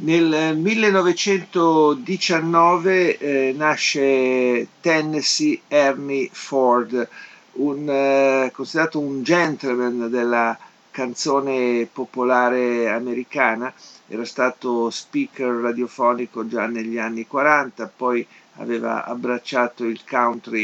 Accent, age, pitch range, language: native, 50-69, 115-140 Hz, Italian